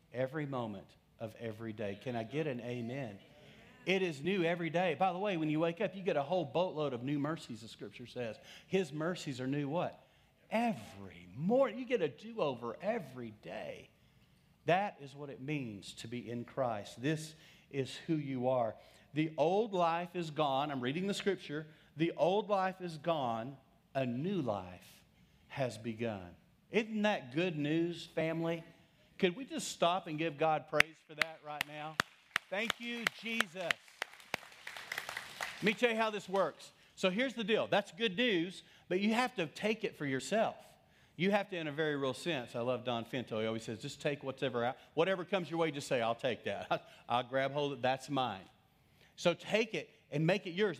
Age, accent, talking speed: 40-59, American, 195 wpm